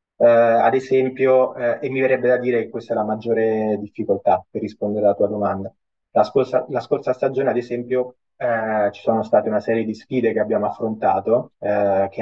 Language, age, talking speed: Italian, 20-39, 170 wpm